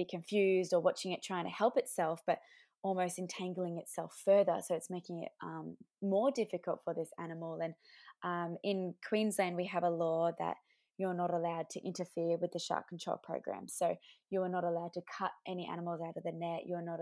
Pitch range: 170-190 Hz